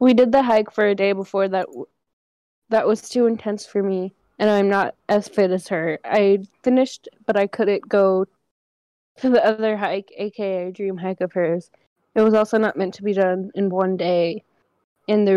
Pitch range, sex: 195-225 Hz, female